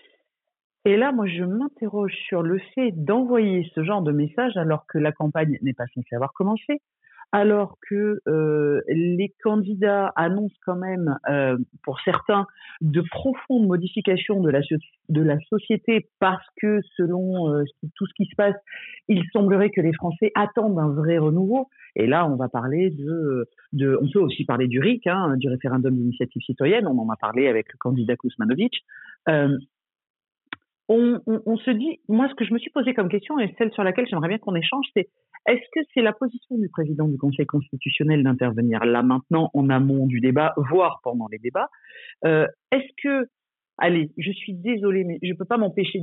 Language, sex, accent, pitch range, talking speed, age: French, female, French, 150-215 Hz, 185 wpm, 50-69